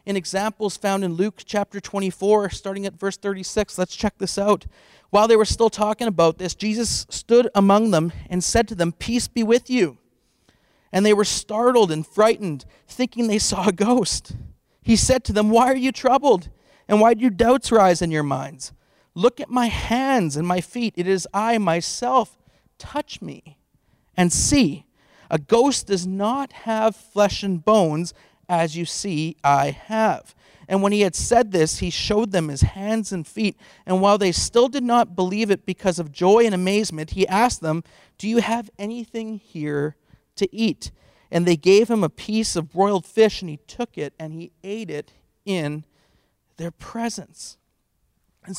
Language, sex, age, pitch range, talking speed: English, male, 40-59, 175-230 Hz, 180 wpm